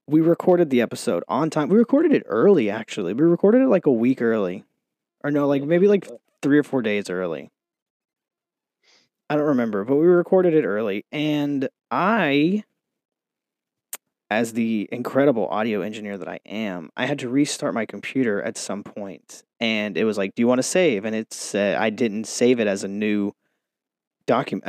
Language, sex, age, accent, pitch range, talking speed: English, male, 20-39, American, 110-150 Hz, 180 wpm